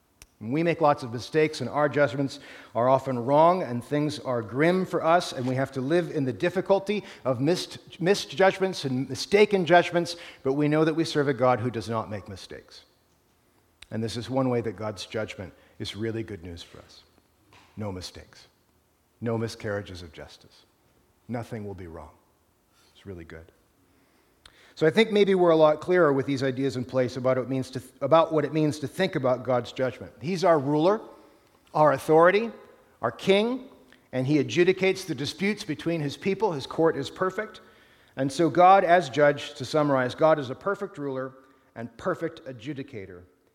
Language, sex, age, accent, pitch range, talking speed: English, male, 50-69, American, 115-165 Hz, 180 wpm